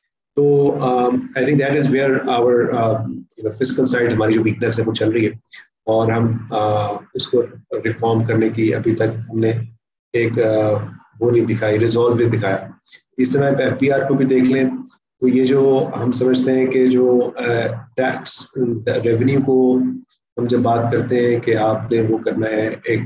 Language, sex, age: Urdu, male, 30-49